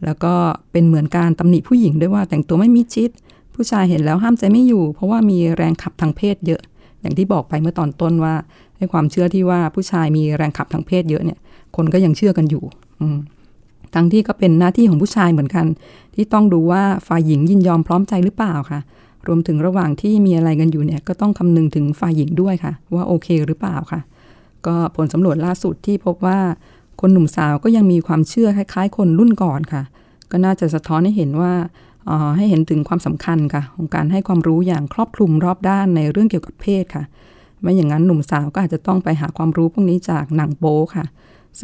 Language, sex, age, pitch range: Thai, female, 20-39, 155-185 Hz